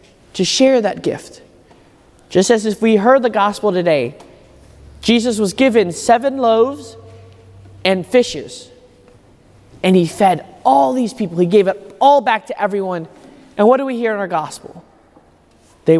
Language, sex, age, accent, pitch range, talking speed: English, male, 30-49, American, 185-255 Hz, 155 wpm